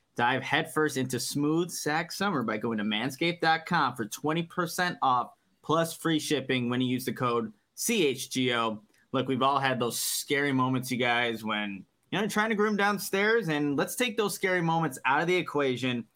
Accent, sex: American, male